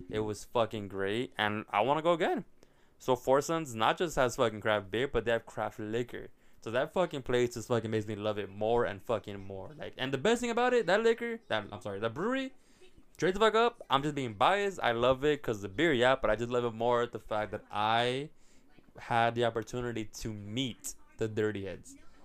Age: 20-39